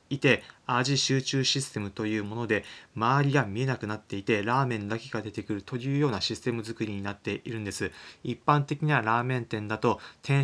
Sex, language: male, Japanese